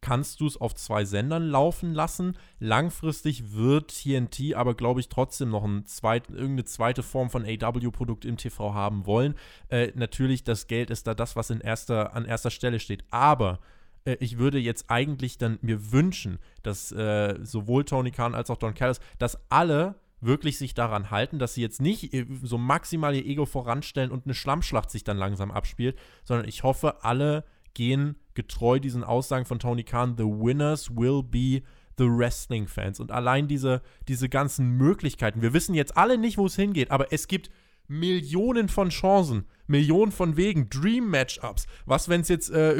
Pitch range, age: 120-155 Hz, 20-39